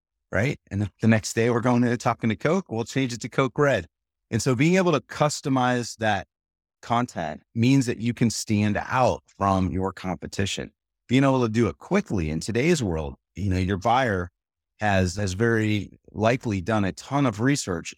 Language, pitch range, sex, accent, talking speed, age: English, 90-120 Hz, male, American, 185 wpm, 30-49